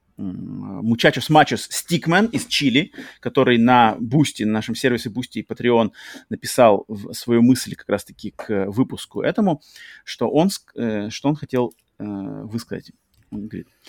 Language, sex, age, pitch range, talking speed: Russian, male, 30-49, 115-145 Hz, 115 wpm